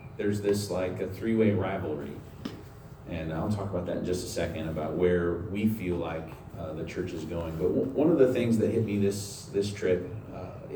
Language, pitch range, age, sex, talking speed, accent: English, 80-120 Hz, 40-59, male, 210 wpm, American